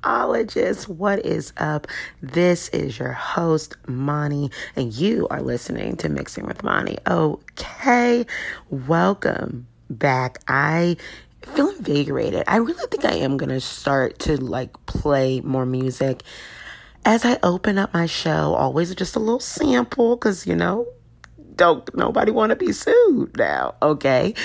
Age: 30-49